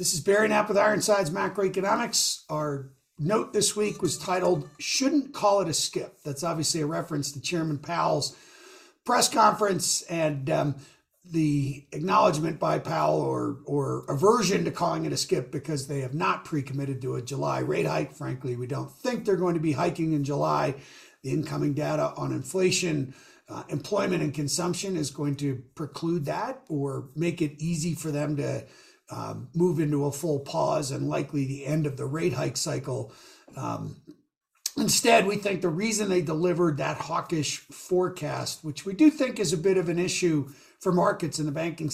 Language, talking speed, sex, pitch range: English, 175 wpm, male, 145-185 Hz